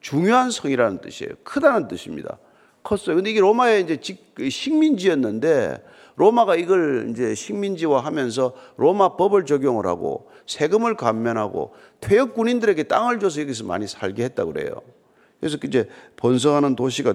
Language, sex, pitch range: Korean, male, 145-230 Hz